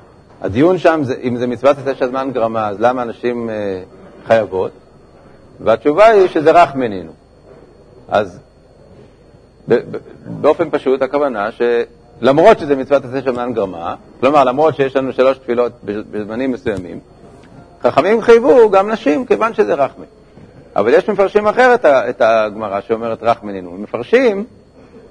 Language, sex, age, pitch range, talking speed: Hebrew, male, 60-79, 115-160 Hz, 135 wpm